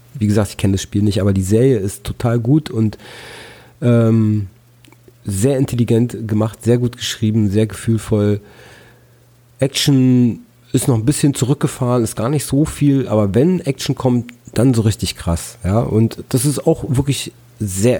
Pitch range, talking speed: 105-125 Hz, 160 wpm